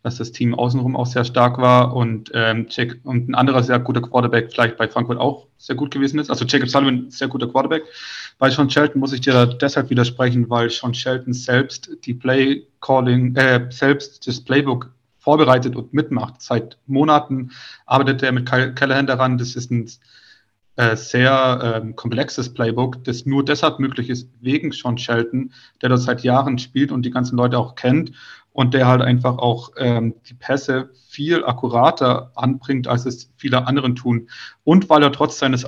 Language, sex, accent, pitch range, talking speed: German, male, German, 120-135 Hz, 185 wpm